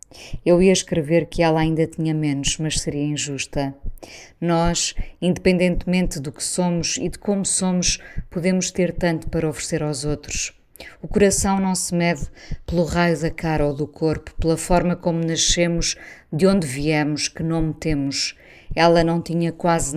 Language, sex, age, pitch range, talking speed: Portuguese, female, 20-39, 150-175 Hz, 160 wpm